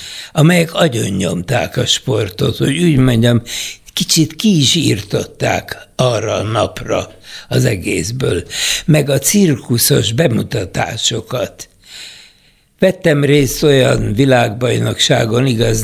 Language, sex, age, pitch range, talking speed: Hungarian, male, 60-79, 115-150 Hz, 95 wpm